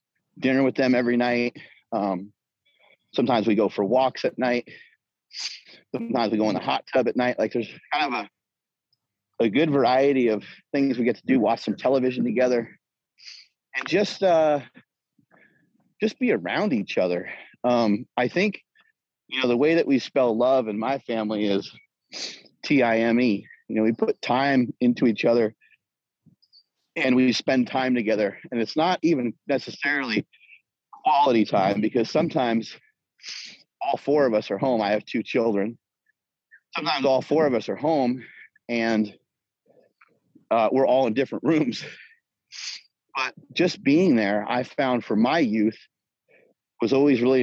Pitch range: 115-135 Hz